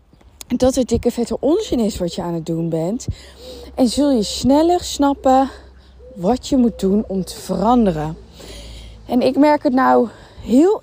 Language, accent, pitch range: Dutch, Dutch, 215-290 Hz